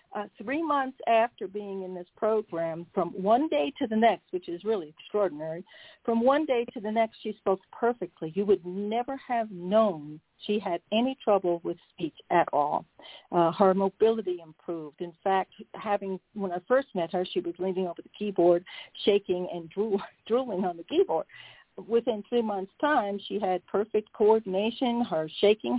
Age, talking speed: 60-79, 170 wpm